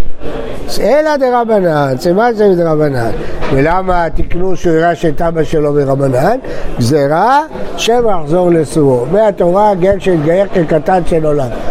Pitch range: 155-200 Hz